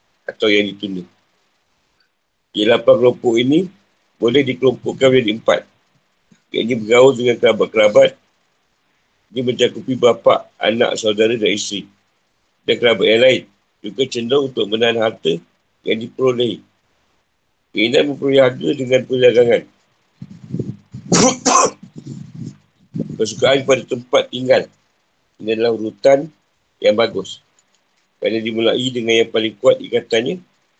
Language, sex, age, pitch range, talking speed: Malay, male, 50-69, 115-145 Hz, 110 wpm